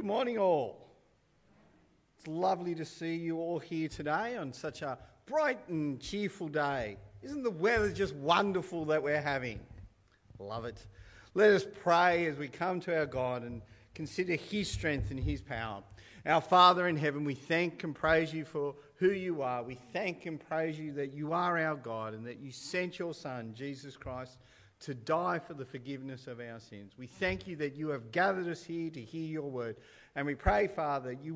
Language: English